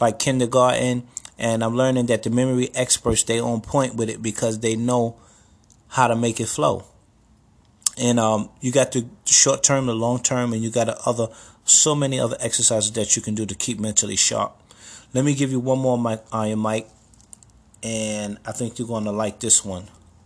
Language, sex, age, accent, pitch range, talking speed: English, male, 30-49, American, 105-120 Hz, 195 wpm